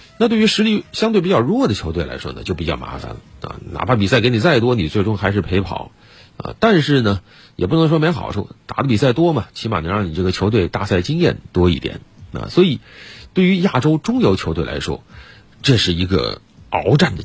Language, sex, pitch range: Chinese, male, 95-135 Hz